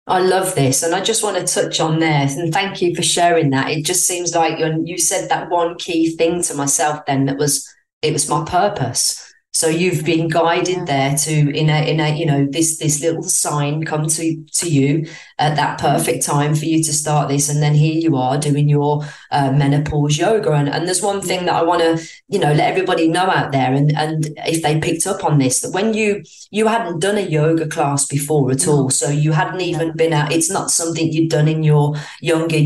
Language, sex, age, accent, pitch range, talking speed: English, female, 30-49, British, 150-175 Hz, 230 wpm